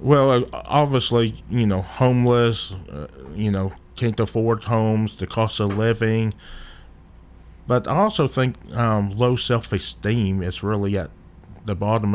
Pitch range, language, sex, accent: 100-125 Hz, English, male, American